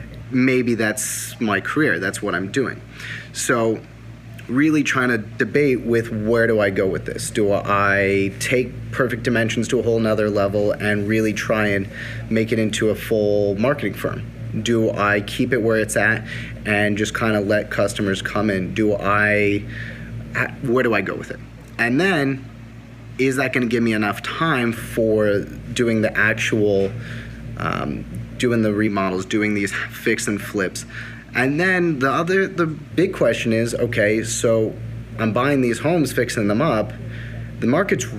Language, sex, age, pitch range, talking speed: English, male, 30-49, 110-125 Hz, 165 wpm